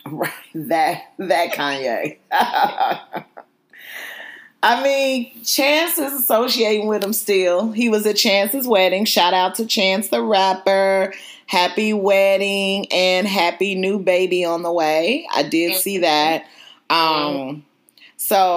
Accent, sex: American, female